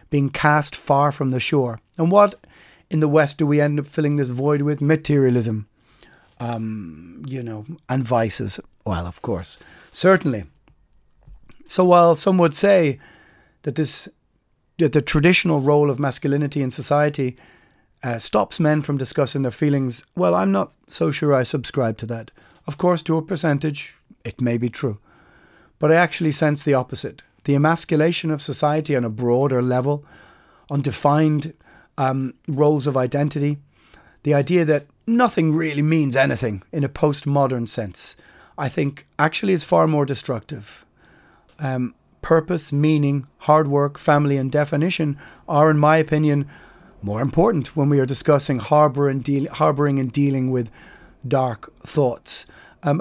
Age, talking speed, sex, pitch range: 30-49, 150 wpm, male, 130-155 Hz